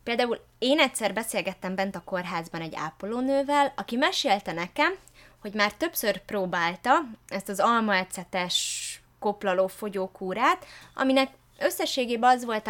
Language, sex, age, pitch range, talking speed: Hungarian, female, 20-39, 195-275 Hz, 115 wpm